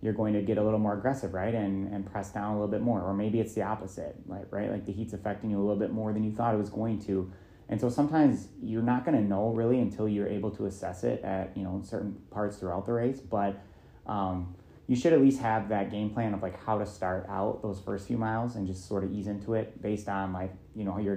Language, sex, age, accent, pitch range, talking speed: English, male, 30-49, American, 95-110 Hz, 270 wpm